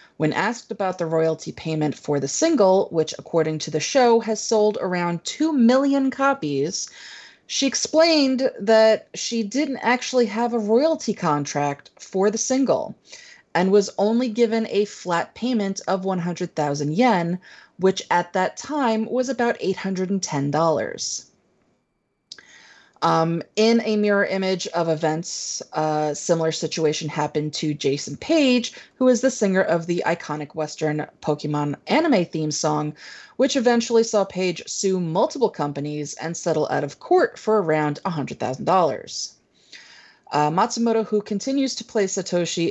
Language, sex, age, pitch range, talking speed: English, female, 30-49, 155-225 Hz, 140 wpm